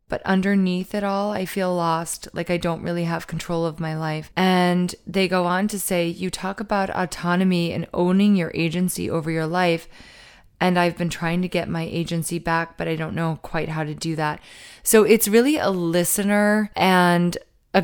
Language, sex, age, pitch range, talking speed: English, female, 20-39, 165-200 Hz, 195 wpm